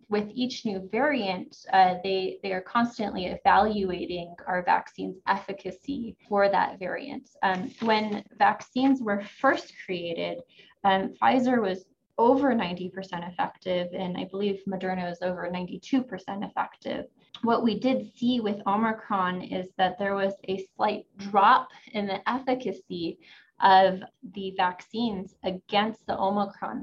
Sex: female